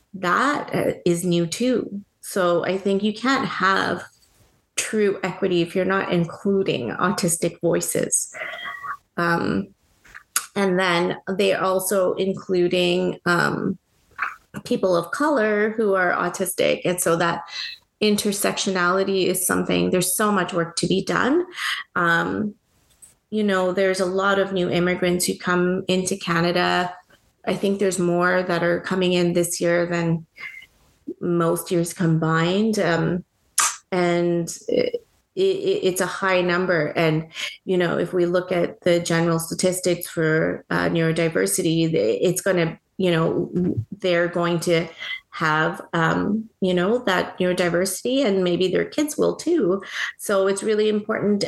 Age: 30-49